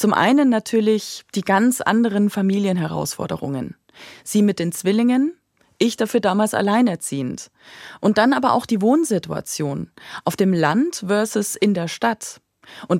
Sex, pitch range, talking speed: female, 175-235 Hz, 135 wpm